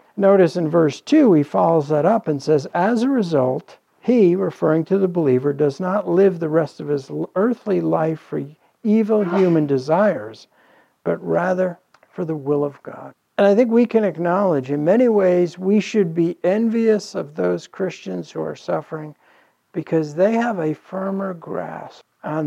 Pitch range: 160-210 Hz